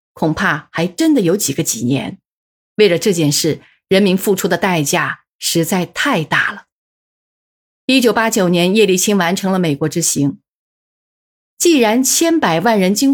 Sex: female